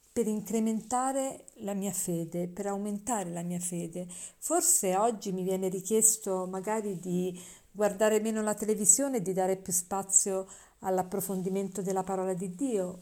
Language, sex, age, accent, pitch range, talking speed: Italian, female, 50-69, native, 195-230 Hz, 145 wpm